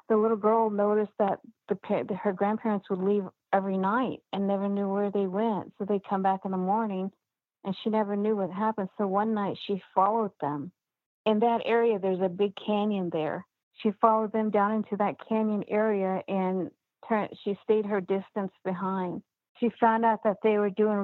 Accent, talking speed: American, 190 wpm